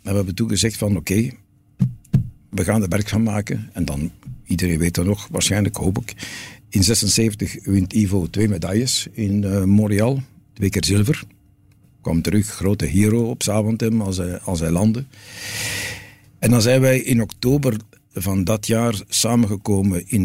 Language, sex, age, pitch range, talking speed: Dutch, male, 60-79, 95-115 Hz, 165 wpm